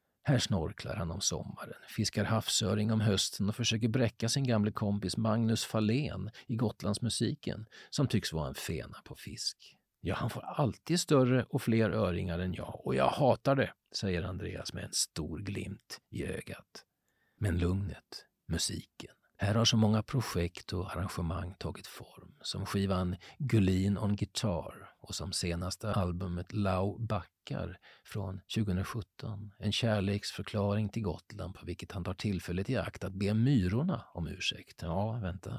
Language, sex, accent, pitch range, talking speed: Swedish, male, native, 95-115 Hz, 155 wpm